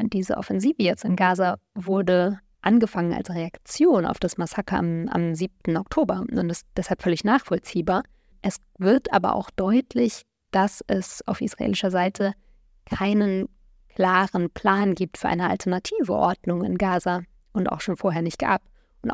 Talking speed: 150 wpm